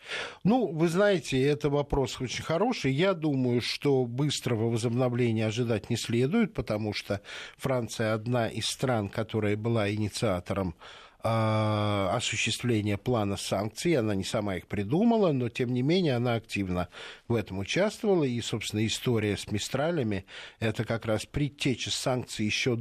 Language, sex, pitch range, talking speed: Russian, male, 110-150 Hz, 140 wpm